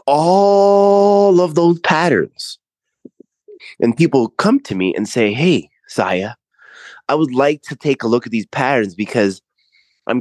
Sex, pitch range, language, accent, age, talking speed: male, 95-135 Hz, English, American, 20-39, 145 wpm